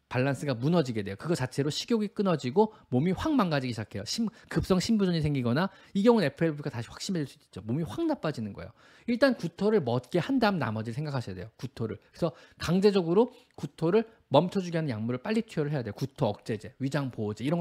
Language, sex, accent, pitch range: Korean, male, native, 125-195 Hz